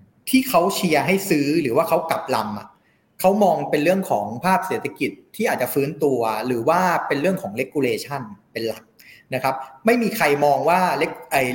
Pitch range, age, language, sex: 140-185 Hz, 30-49, Thai, male